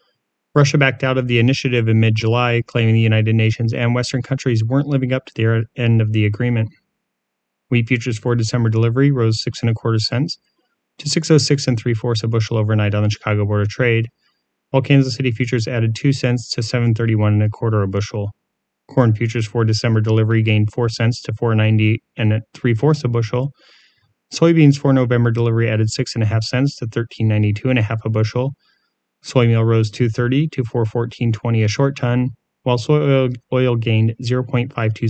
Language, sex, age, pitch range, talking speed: English, male, 30-49, 110-125 Hz, 190 wpm